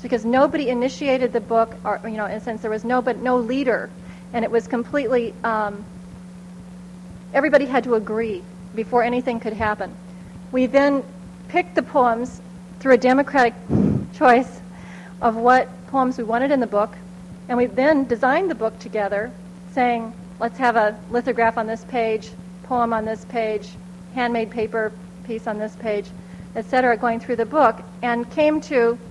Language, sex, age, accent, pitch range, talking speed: English, female, 40-59, American, 180-255 Hz, 165 wpm